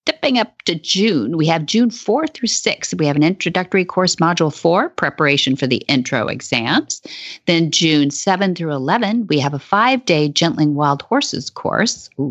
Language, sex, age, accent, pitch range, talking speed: English, female, 50-69, American, 150-215 Hz, 175 wpm